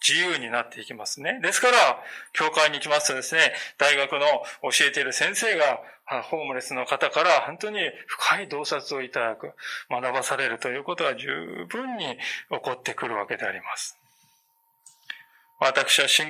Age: 20-39